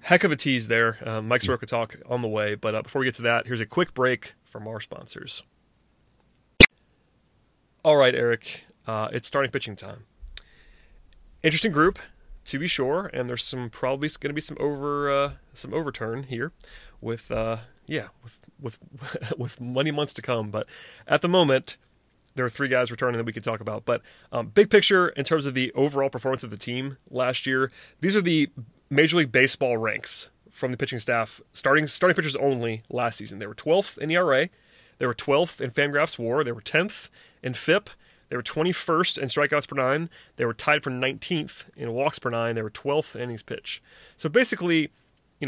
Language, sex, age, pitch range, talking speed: English, male, 30-49, 115-145 Hz, 195 wpm